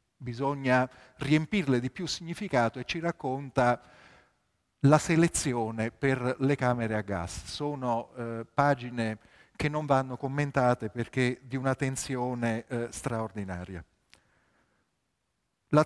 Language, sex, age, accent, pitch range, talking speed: Italian, male, 40-59, native, 115-150 Hz, 110 wpm